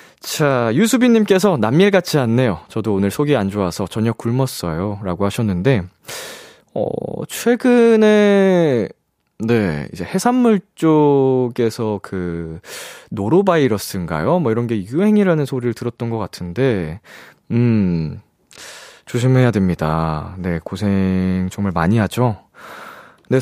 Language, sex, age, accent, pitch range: Korean, male, 20-39, native, 100-165 Hz